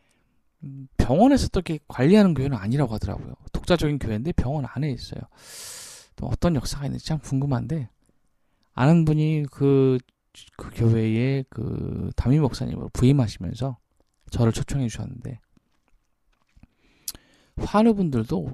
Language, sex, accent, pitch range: Korean, male, native, 115-150 Hz